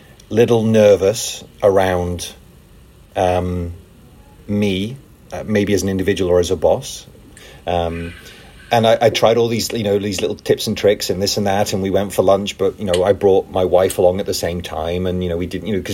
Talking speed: 210 wpm